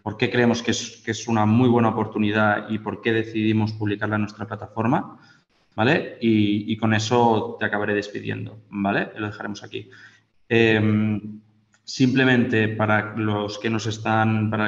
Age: 20-39